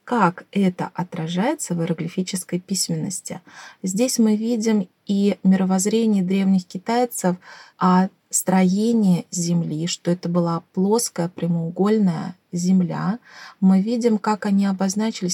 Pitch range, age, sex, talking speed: 180-205 Hz, 20-39, female, 105 wpm